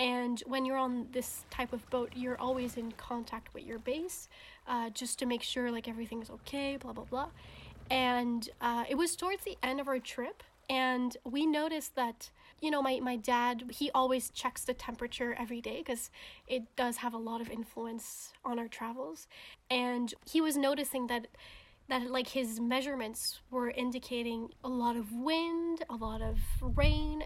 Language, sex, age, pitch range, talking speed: English, female, 10-29, 240-265 Hz, 185 wpm